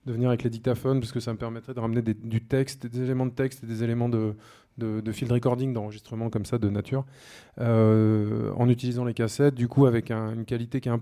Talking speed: 250 wpm